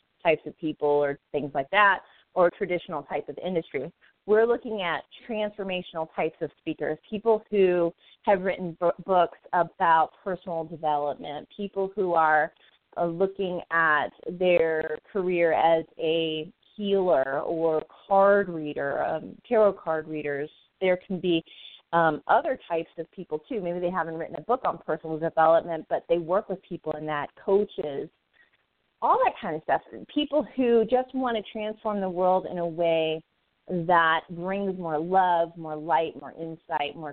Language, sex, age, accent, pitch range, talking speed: English, female, 30-49, American, 160-195 Hz, 155 wpm